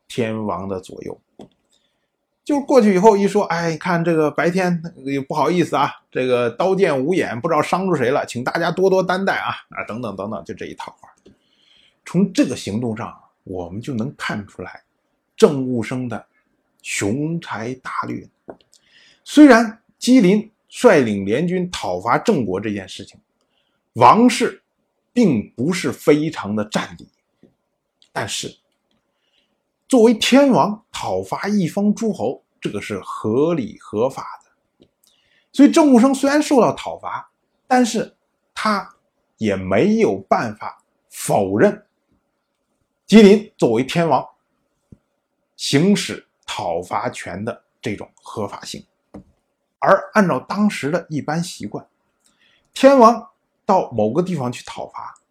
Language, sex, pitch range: Chinese, male, 140-225 Hz